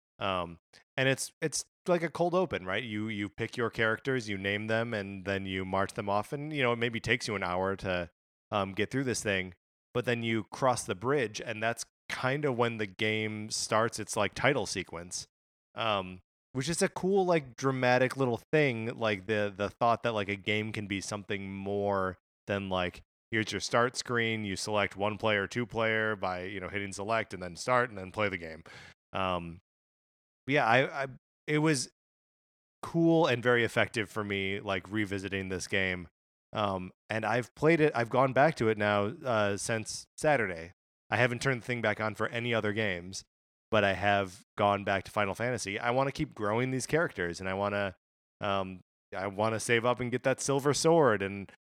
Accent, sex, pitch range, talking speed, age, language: American, male, 100-120 Hz, 200 wpm, 30-49, English